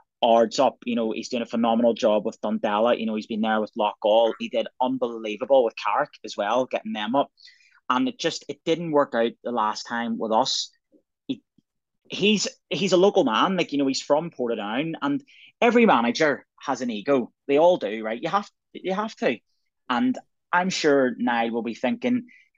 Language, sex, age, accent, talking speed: English, male, 30-49, British, 195 wpm